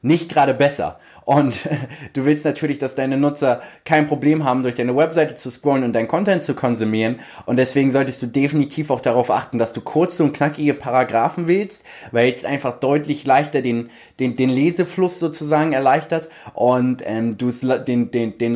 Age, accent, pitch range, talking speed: 20-39, German, 120-145 Hz, 180 wpm